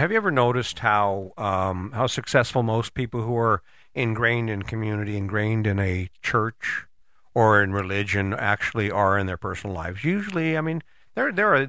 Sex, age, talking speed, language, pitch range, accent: male, 50-69, 175 wpm, English, 105-130 Hz, American